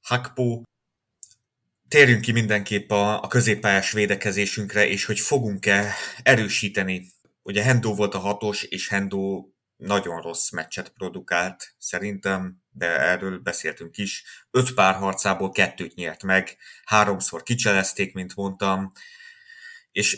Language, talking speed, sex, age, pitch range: Hungarian, 115 wpm, male, 30-49, 95-110 Hz